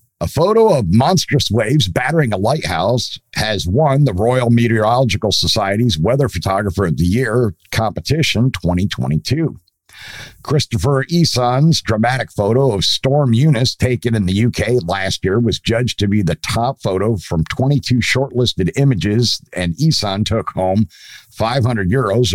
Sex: male